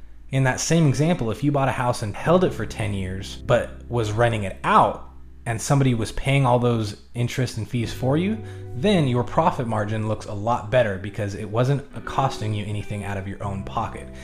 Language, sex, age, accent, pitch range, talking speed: English, male, 20-39, American, 110-135 Hz, 210 wpm